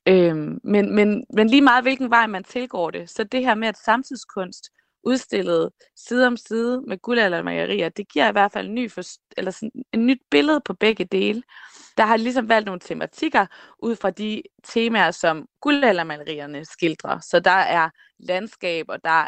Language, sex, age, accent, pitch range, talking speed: Danish, female, 20-39, native, 170-225 Hz, 175 wpm